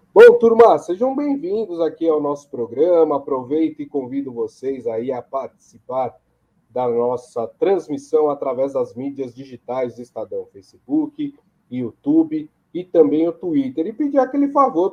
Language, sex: Portuguese, male